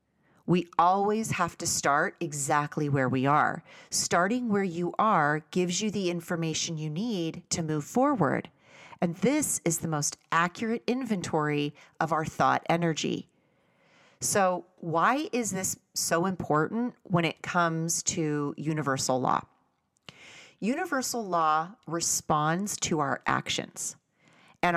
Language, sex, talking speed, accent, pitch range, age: English, female, 125 wpm, American, 155-195 Hz, 40-59